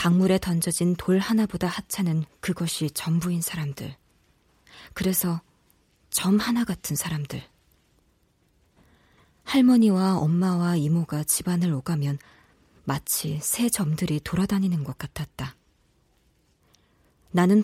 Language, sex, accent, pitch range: Korean, female, native, 155-205 Hz